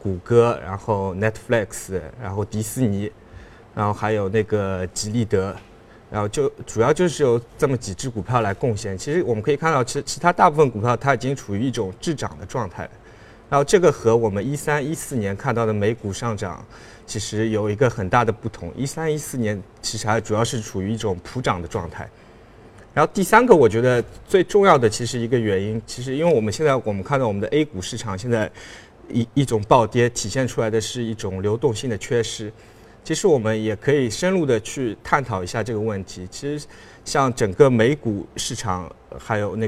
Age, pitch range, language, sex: 20-39, 105-125 Hz, Chinese, male